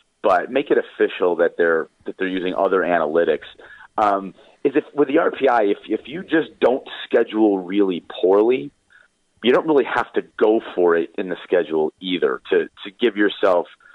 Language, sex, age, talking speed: English, male, 40-59, 175 wpm